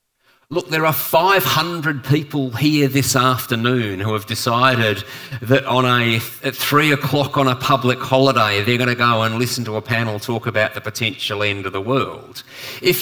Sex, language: male, English